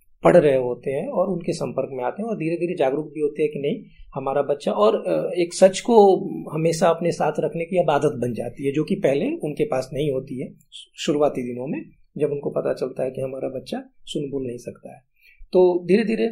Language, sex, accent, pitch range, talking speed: Hindi, male, native, 135-175 Hz, 225 wpm